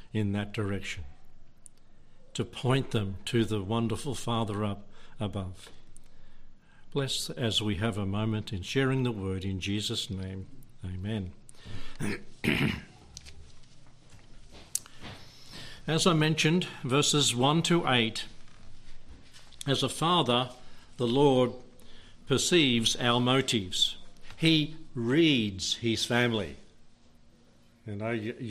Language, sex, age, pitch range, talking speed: English, male, 60-79, 110-145 Hz, 100 wpm